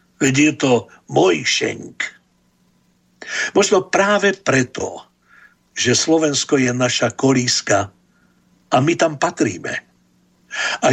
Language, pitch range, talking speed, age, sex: Slovak, 115-150 Hz, 95 wpm, 60-79, male